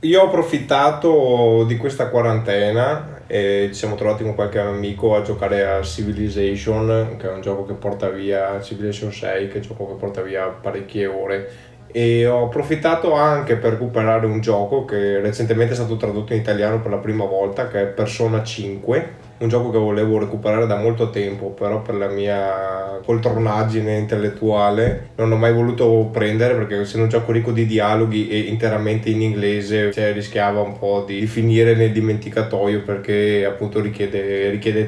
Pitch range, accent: 105-115 Hz, native